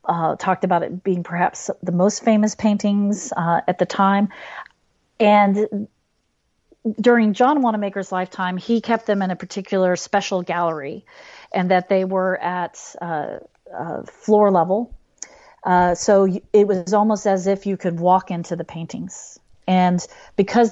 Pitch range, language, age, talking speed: 175-210 Hz, English, 40-59, 150 wpm